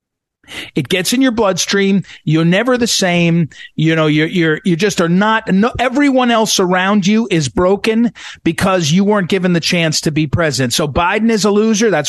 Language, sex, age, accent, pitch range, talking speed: English, male, 50-69, American, 165-230 Hz, 190 wpm